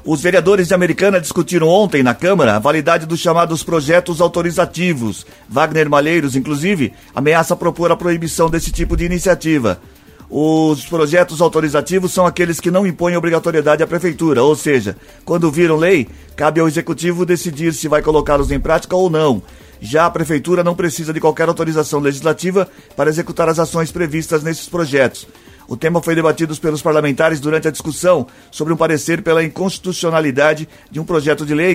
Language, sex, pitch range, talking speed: Portuguese, male, 150-170 Hz, 165 wpm